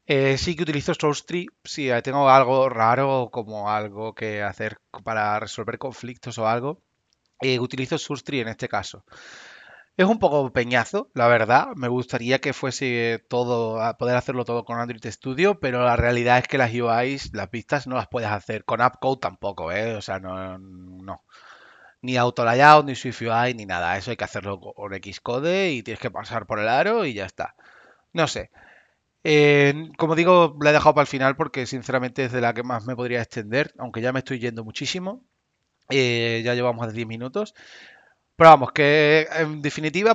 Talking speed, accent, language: 180 wpm, Spanish, Spanish